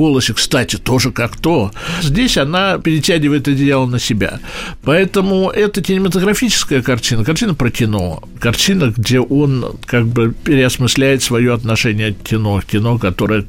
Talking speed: 135 wpm